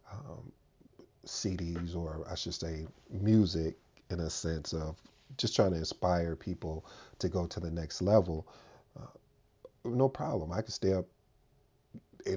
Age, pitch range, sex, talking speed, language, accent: 40-59, 85-105 Hz, male, 145 wpm, English, American